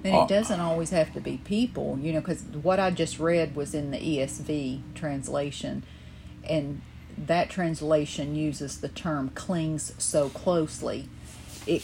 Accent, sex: American, female